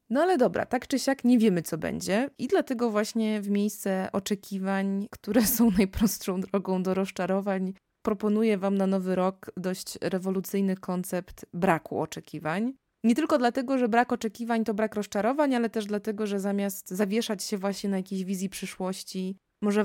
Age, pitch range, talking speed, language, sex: 20-39, 185-220 Hz, 165 wpm, Polish, female